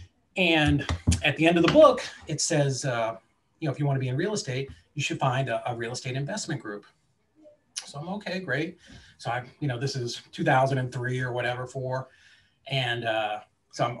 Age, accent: 30-49, American